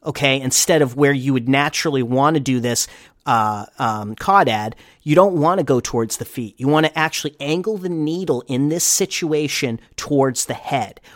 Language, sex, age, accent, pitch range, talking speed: English, male, 40-59, American, 120-155 Hz, 195 wpm